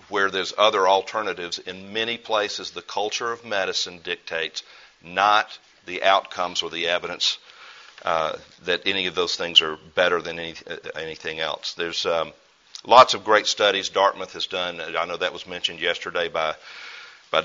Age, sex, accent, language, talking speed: 50-69, male, American, English, 165 wpm